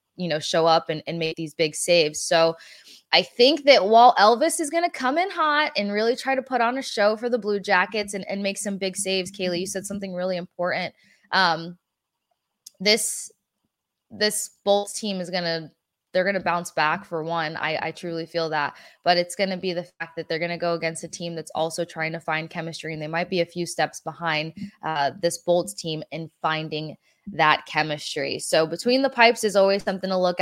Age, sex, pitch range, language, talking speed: 20-39, female, 165-200 Hz, English, 220 wpm